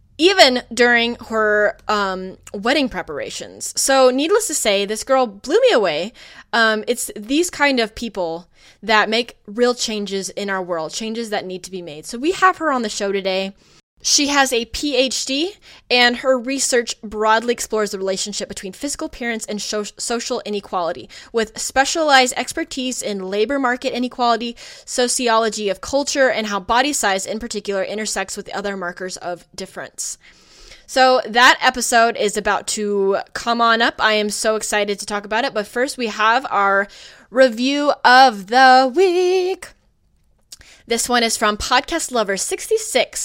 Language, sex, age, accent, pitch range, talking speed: English, female, 20-39, American, 205-260 Hz, 160 wpm